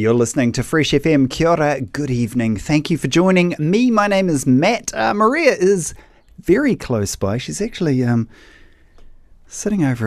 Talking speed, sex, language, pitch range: 175 wpm, male, English, 115-155 Hz